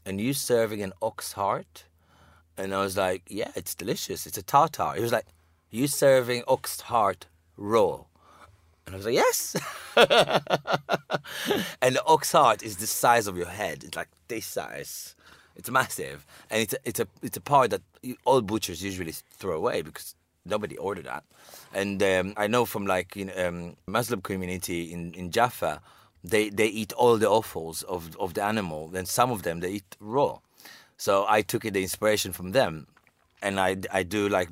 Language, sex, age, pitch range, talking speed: English, male, 30-49, 90-110 Hz, 185 wpm